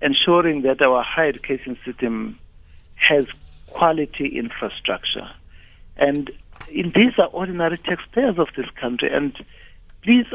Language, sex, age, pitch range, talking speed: English, male, 60-79, 115-175 Hz, 110 wpm